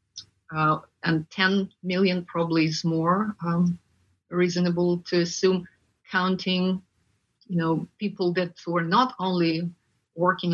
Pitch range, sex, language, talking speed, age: 160-185 Hz, female, English, 115 wpm, 30-49